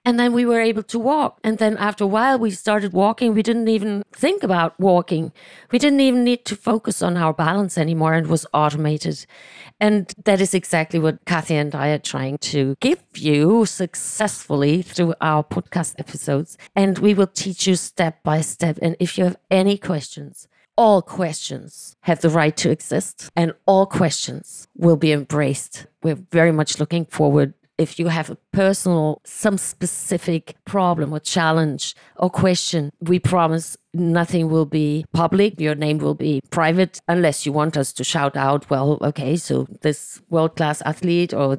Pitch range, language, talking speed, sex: 155-200 Hz, English, 175 wpm, female